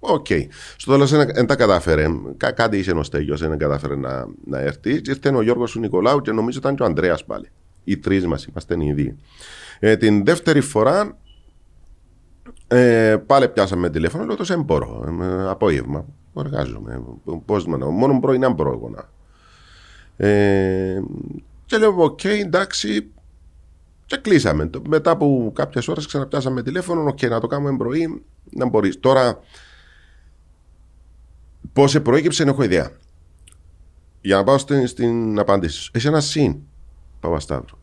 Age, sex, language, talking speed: 40-59, male, Greek, 150 wpm